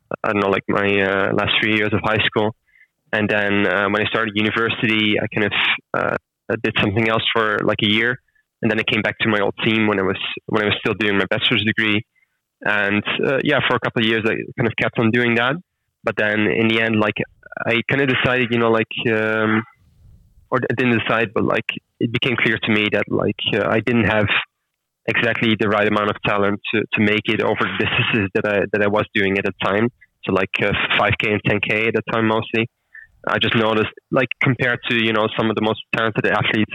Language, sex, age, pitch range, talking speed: English, male, 20-39, 105-115 Hz, 230 wpm